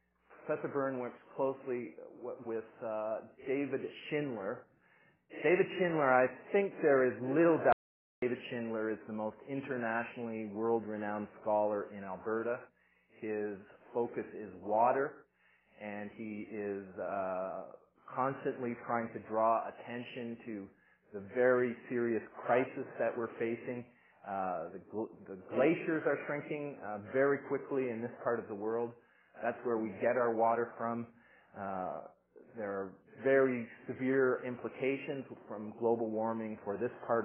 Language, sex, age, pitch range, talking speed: English, male, 40-59, 105-125 Hz, 130 wpm